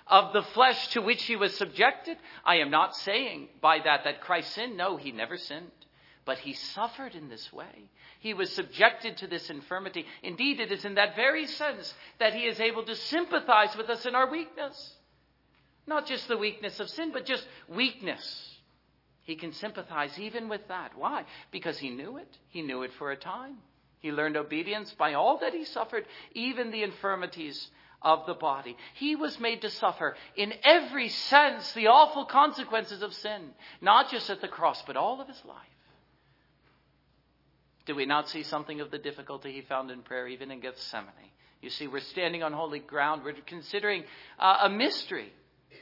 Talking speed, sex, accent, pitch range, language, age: 185 wpm, male, American, 155-245 Hz, English, 50-69